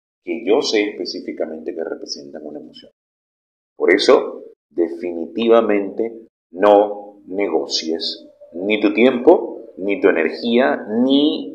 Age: 40-59